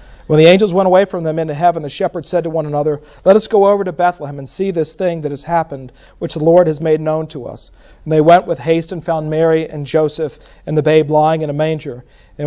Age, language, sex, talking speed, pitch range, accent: 40-59, English, male, 260 wpm, 145-170 Hz, American